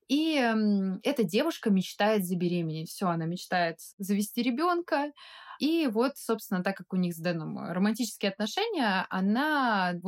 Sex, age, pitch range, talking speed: female, 20-39, 190-250 Hz, 135 wpm